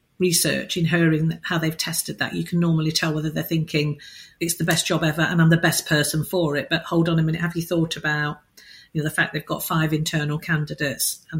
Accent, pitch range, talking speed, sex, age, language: British, 165-210 Hz, 240 wpm, female, 50-69, English